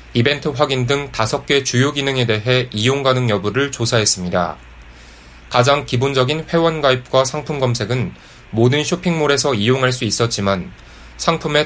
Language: Korean